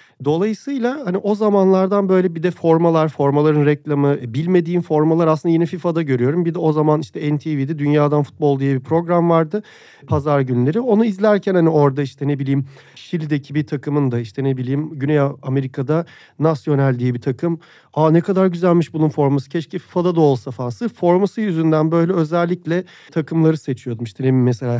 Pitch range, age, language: 135-175 Hz, 40-59, Turkish